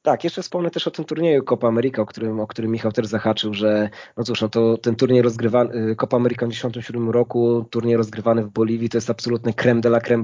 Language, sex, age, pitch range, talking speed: Polish, male, 20-39, 110-120 Hz, 230 wpm